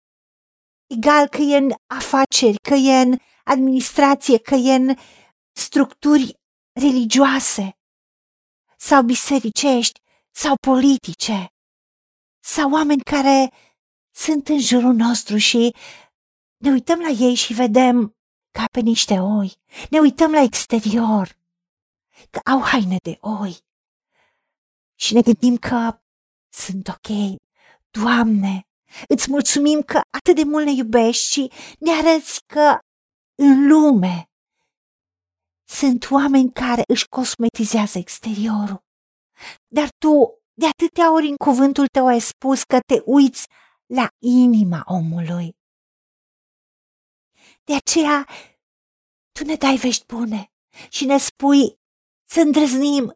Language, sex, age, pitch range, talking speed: Romanian, female, 40-59, 225-285 Hz, 115 wpm